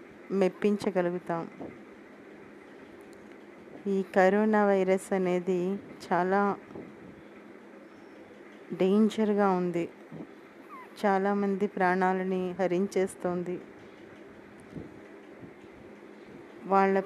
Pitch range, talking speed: 180-215 Hz, 40 wpm